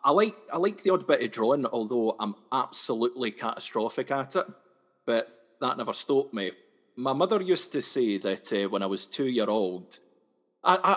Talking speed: 185 wpm